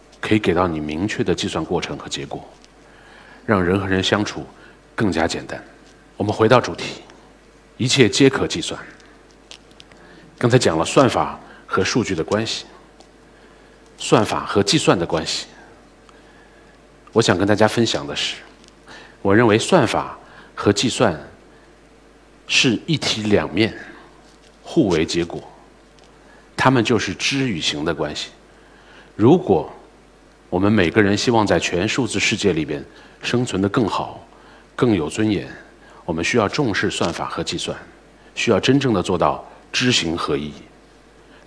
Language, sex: Chinese, male